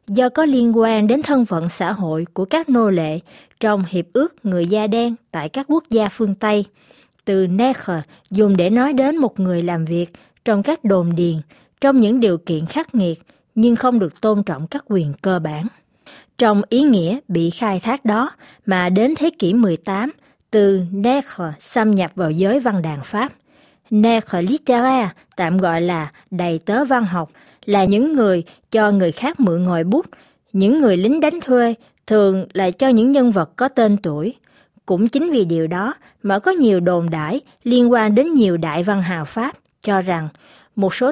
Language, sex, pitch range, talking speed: Vietnamese, female, 180-245 Hz, 185 wpm